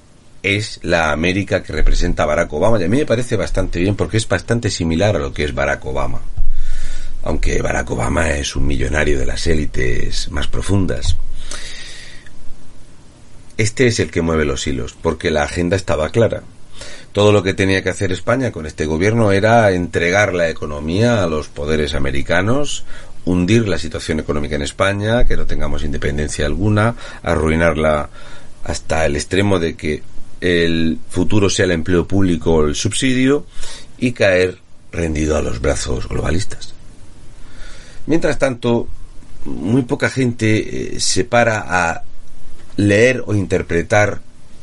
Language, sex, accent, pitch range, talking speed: Spanish, male, Spanish, 80-115 Hz, 150 wpm